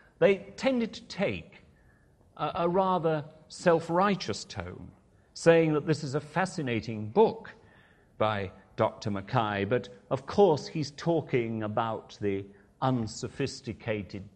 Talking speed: 115 wpm